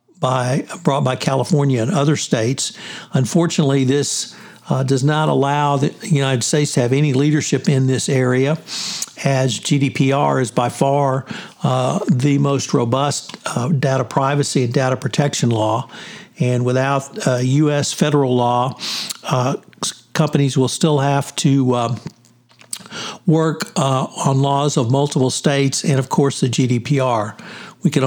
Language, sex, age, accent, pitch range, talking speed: English, male, 60-79, American, 130-155 Hz, 140 wpm